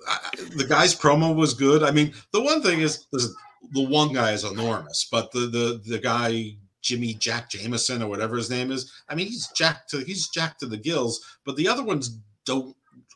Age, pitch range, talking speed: 50-69, 110-150 Hz, 210 wpm